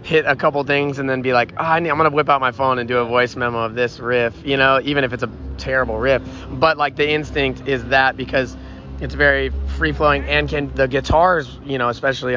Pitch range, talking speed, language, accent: 115-135 Hz, 235 wpm, English, American